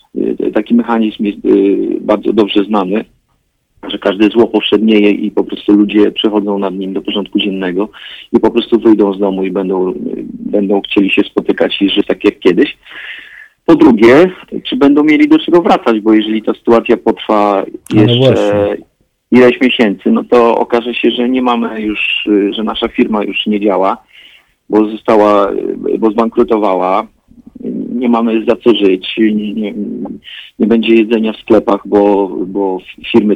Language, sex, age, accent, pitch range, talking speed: Polish, male, 40-59, native, 100-120 Hz, 155 wpm